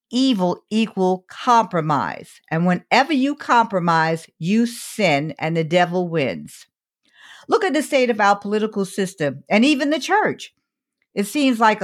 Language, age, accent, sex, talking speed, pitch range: English, 50-69, American, female, 140 wpm, 165-230 Hz